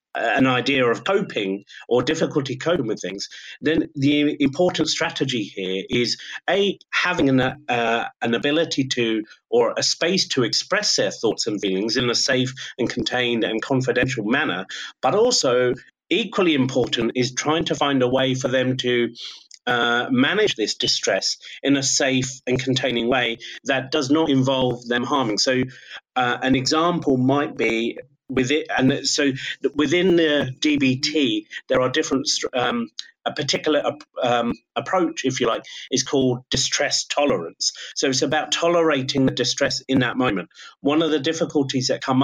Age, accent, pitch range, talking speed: 30-49, British, 125-150 Hz, 160 wpm